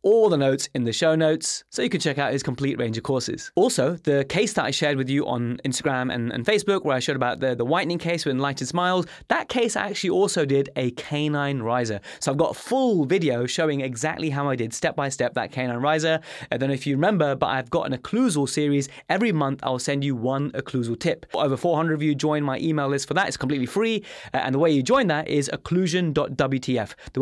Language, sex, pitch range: English, male, 135-160 Hz